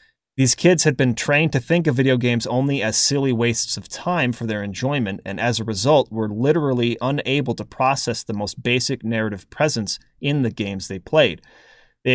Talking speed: 195 wpm